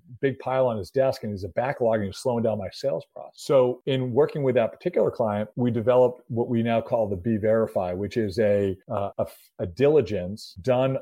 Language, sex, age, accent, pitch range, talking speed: English, male, 40-59, American, 100-120 Hz, 220 wpm